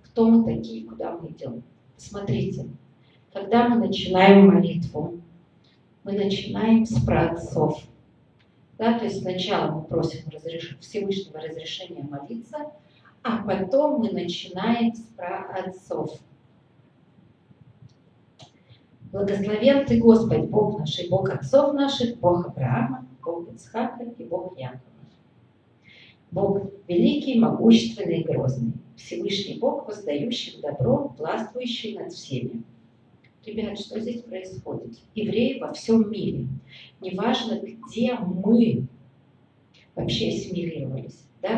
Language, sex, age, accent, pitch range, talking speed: Russian, female, 40-59, native, 145-220 Hz, 105 wpm